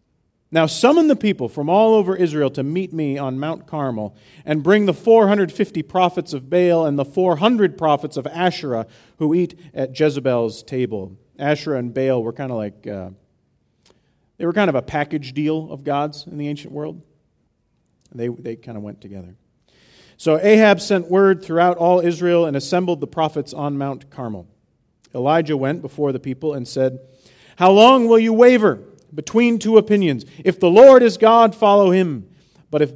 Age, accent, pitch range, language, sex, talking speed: 40-59, American, 125-180 Hz, English, male, 180 wpm